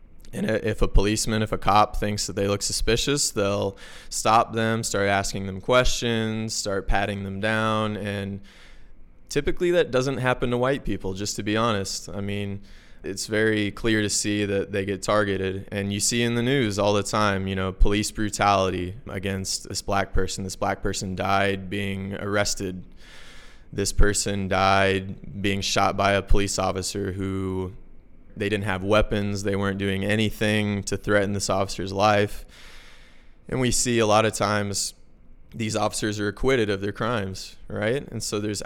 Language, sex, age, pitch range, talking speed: English, male, 20-39, 95-105 Hz, 170 wpm